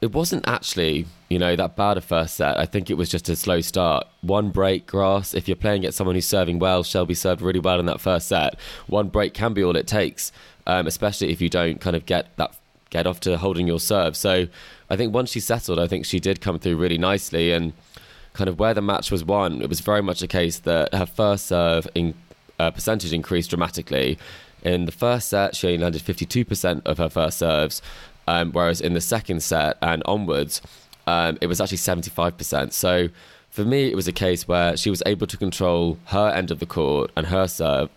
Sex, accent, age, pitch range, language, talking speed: male, British, 20-39, 85-100 Hz, English, 225 wpm